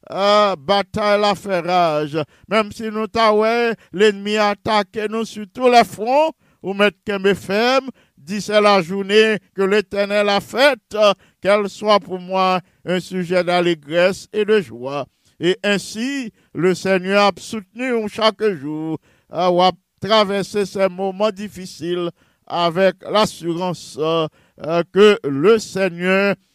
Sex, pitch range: male, 160-200 Hz